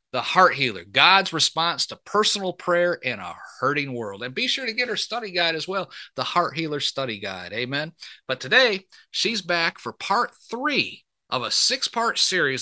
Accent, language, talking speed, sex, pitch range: American, English, 185 wpm, male, 140-195 Hz